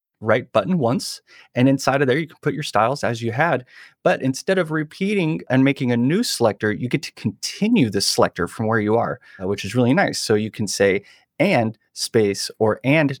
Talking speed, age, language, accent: 210 wpm, 30-49, English, American